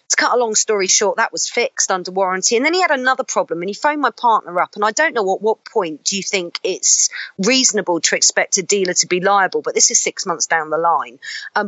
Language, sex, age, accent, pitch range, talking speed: English, female, 40-59, British, 180-240 Hz, 265 wpm